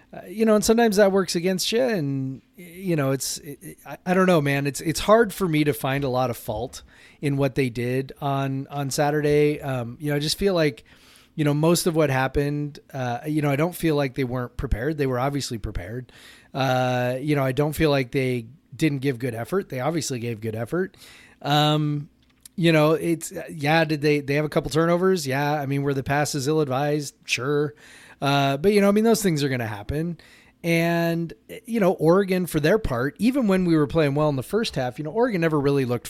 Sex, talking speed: male, 225 wpm